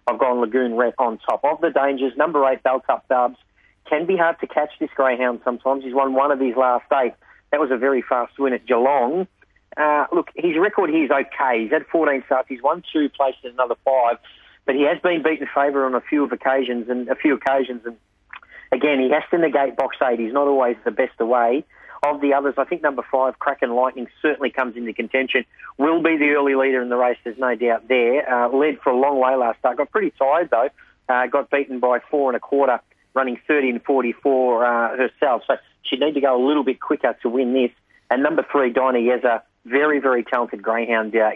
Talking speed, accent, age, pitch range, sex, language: 225 wpm, Australian, 40-59, 120-140 Hz, male, English